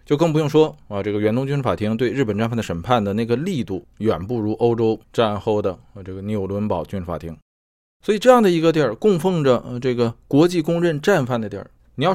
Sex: male